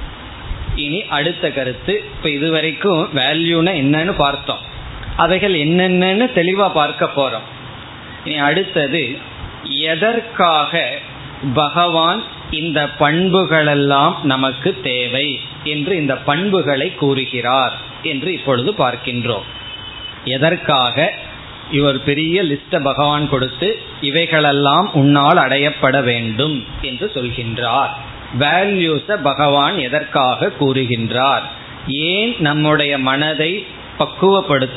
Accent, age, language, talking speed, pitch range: native, 20-39, Tamil, 65 wpm, 130-165 Hz